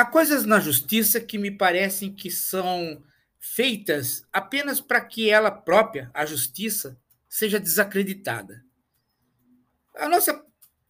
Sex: male